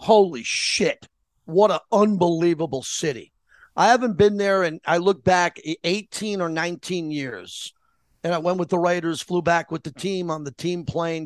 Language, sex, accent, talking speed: English, male, American, 175 wpm